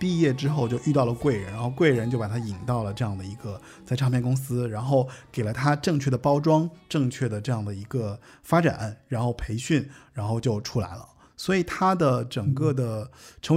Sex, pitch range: male, 120-155 Hz